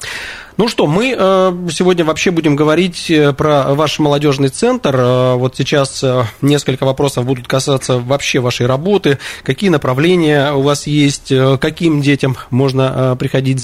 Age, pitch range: 20-39, 125-150 Hz